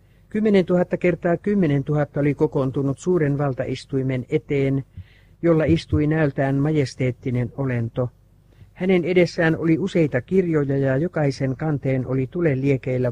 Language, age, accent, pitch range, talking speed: Finnish, 60-79, native, 130-165 Hz, 120 wpm